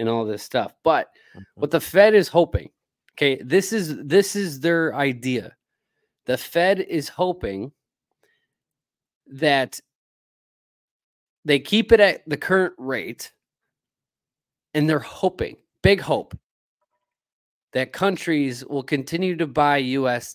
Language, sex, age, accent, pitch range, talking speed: English, male, 30-49, American, 140-185 Hz, 120 wpm